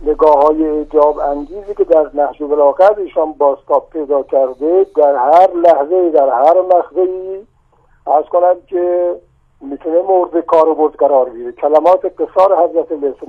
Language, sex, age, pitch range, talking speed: Persian, male, 50-69, 160-205 Hz, 145 wpm